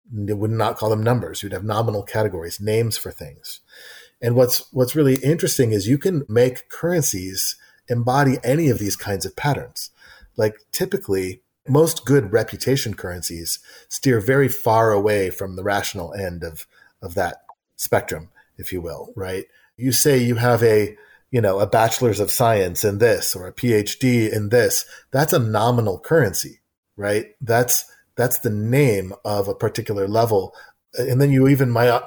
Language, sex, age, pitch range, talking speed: English, male, 30-49, 105-130 Hz, 165 wpm